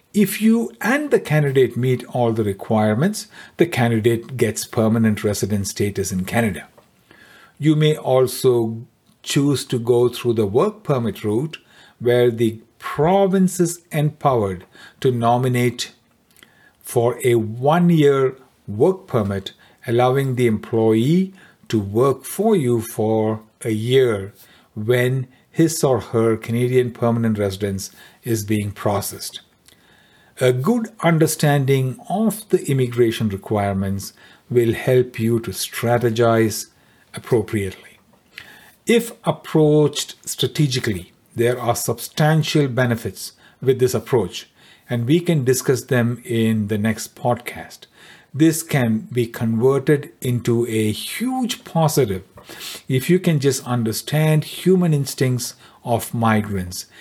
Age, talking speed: 50-69, 115 wpm